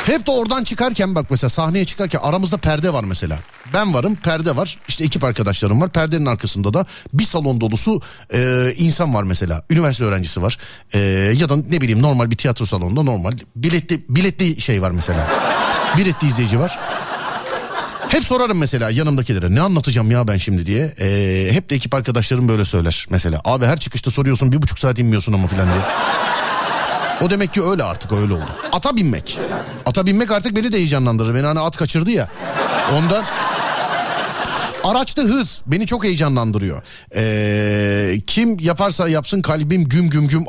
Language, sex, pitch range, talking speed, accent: Turkish, male, 105-175 Hz, 170 wpm, native